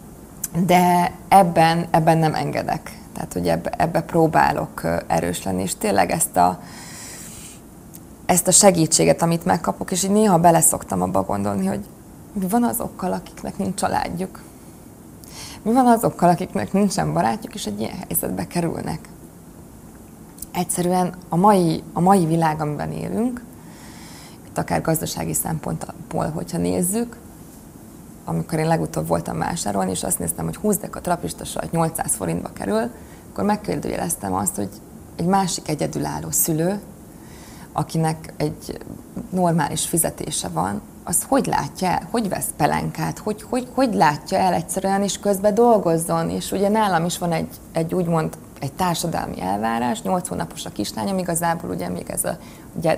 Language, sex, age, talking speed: Hungarian, female, 20-39, 140 wpm